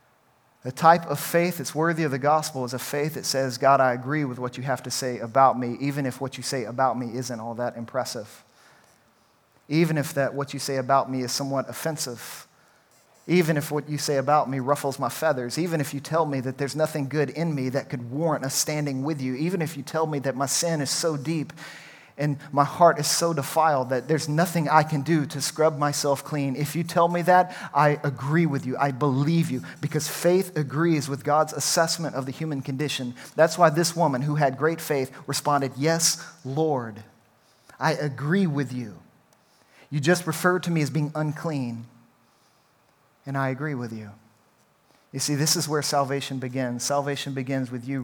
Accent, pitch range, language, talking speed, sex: American, 130-155 Hz, English, 205 wpm, male